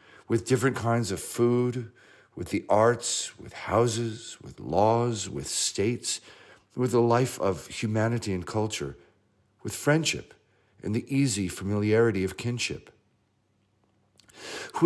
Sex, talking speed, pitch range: male, 120 wpm, 100-140 Hz